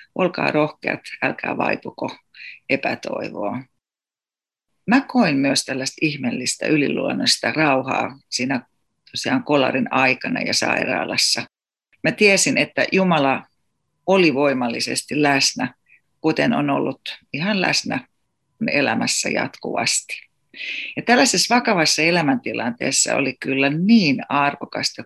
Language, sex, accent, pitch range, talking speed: Finnish, female, native, 135-175 Hz, 95 wpm